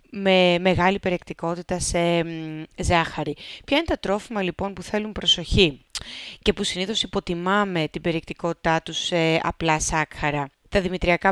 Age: 30-49